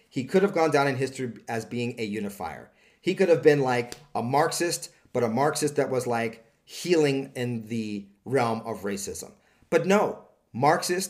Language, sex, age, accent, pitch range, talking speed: English, male, 40-59, American, 105-150 Hz, 180 wpm